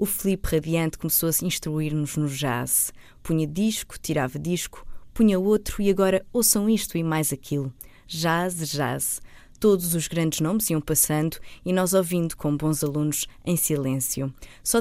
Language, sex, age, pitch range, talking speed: Portuguese, female, 20-39, 145-180 Hz, 160 wpm